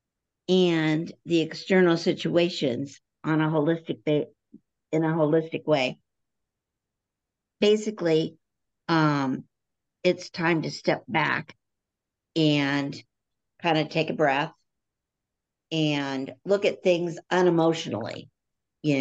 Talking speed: 95 wpm